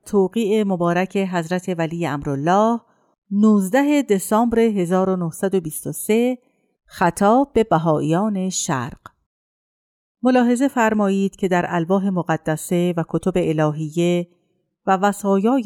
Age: 50-69